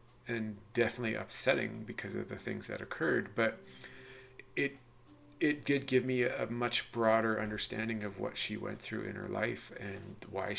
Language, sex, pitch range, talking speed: English, male, 105-120 Hz, 170 wpm